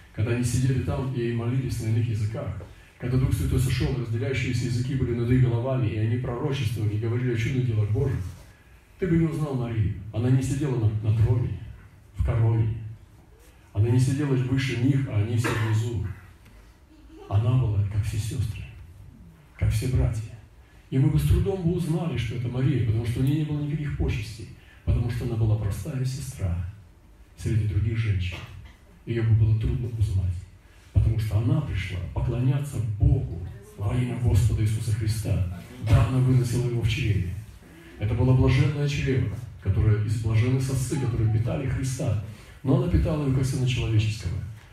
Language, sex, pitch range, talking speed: Russian, male, 105-125 Hz, 165 wpm